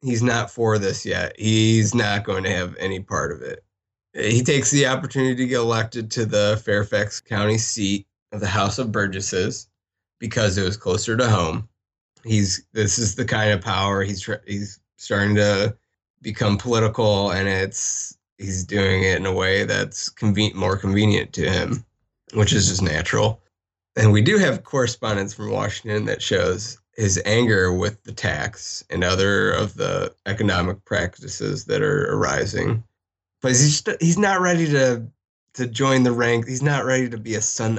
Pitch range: 100-120 Hz